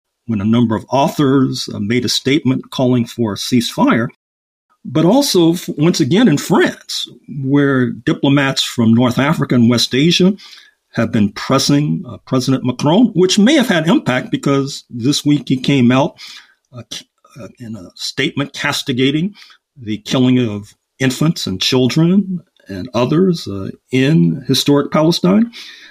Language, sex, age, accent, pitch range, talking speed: English, male, 50-69, American, 115-155 Hz, 140 wpm